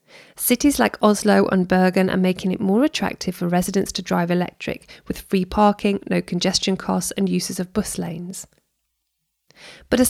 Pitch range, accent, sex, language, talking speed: 180-215 Hz, British, female, English, 165 wpm